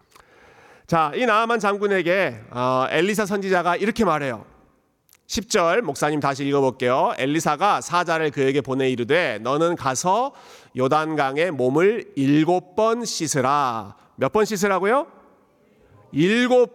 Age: 40-59